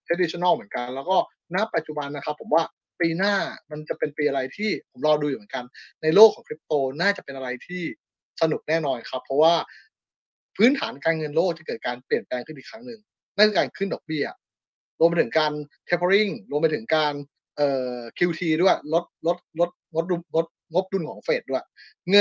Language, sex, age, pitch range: Thai, male, 20-39, 150-200 Hz